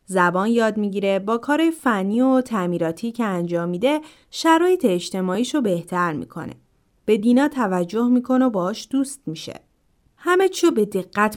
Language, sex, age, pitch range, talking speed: Persian, female, 30-49, 185-265 Hz, 135 wpm